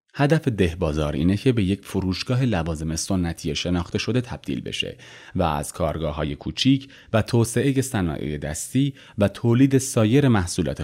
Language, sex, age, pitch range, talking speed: Persian, male, 30-49, 80-120 Hz, 150 wpm